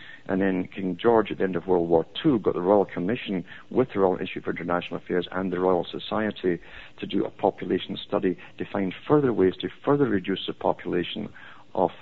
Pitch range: 90-105 Hz